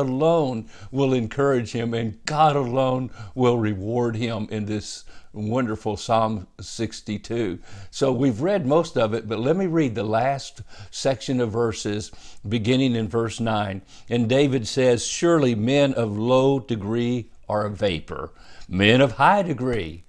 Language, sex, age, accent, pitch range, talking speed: English, male, 50-69, American, 110-145 Hz, 145 wpm